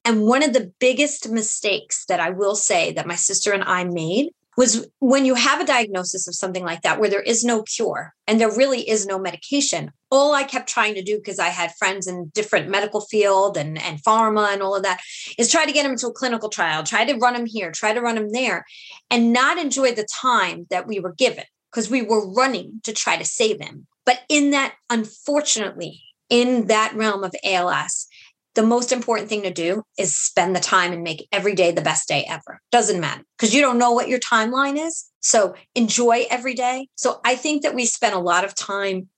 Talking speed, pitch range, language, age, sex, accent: 225 wpm, 190-245 Hz, English, 30-49, female, American